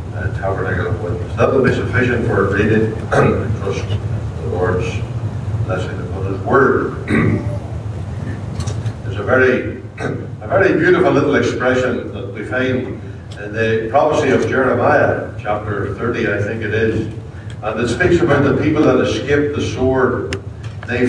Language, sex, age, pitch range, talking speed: English, male, 60-79, 105-135 Hz, 140 wpm